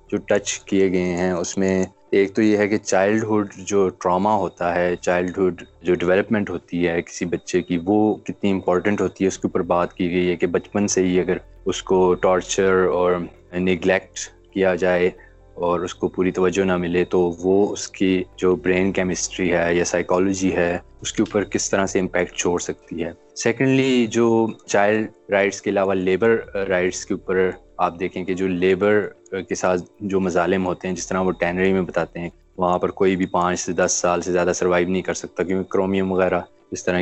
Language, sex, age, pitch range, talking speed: Urdu, male, 20-39, 90-95 Hz, 205 wpm